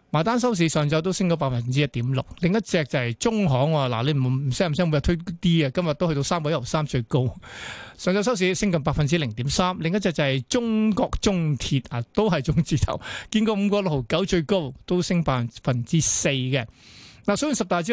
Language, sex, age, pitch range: Chinese, male, 20-39, 140-185 Hz